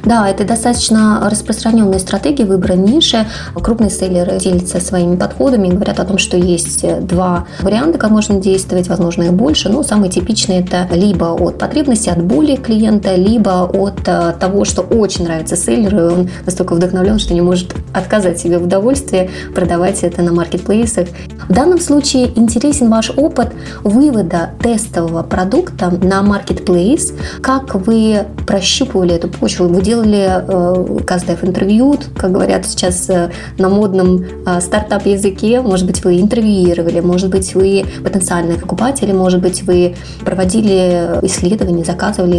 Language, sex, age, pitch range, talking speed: Russian, female, 20-39, 180-215 Hz, 135 wpm